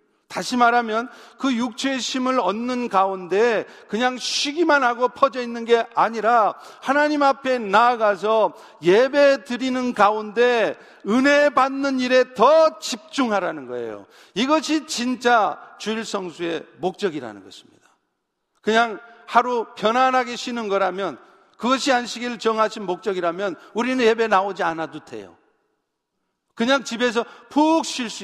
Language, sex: Korean, male